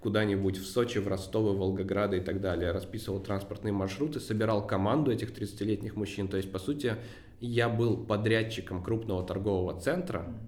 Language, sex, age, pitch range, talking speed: Russian, male, 20-39, 100-120 Hz, 155 wpm